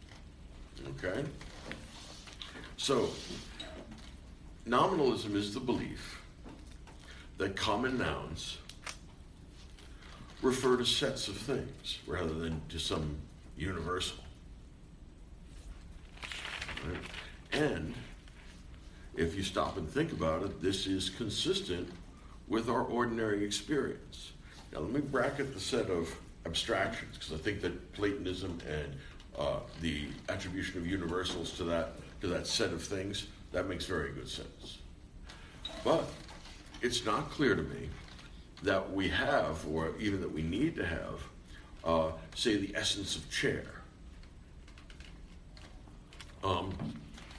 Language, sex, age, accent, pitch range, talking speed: English, male, 60-79, American, 75-95 Hz, 110 wpm